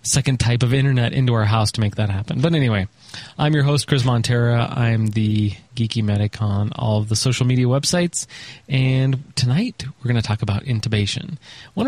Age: 30-49